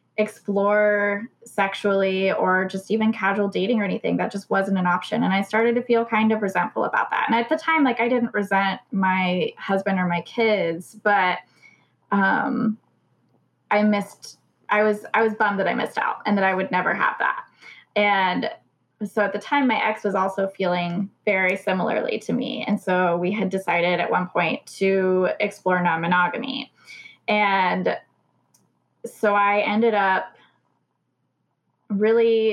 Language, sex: English, female